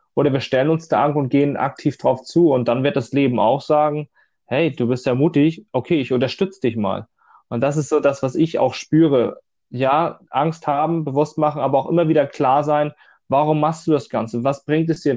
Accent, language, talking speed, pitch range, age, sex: German, German, 225 wpm, 120-145 Hz, 20-39, male